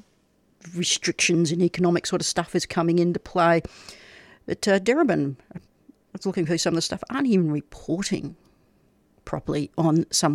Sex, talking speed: female, 150 wpm